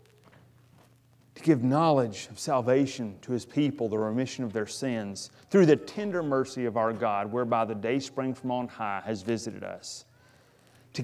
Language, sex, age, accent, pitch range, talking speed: English, male, 30-49, American, 120-165 Hz, 165 wpm